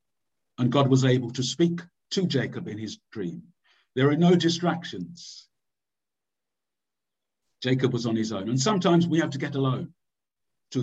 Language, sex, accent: English, male, British